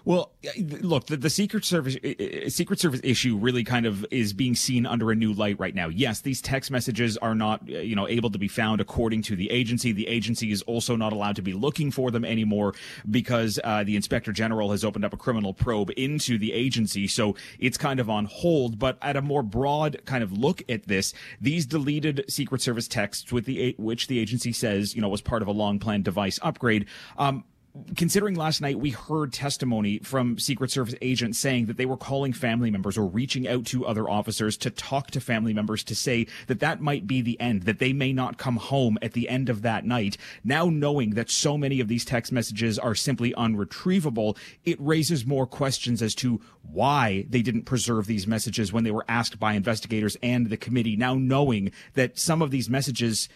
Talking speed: 215 wpm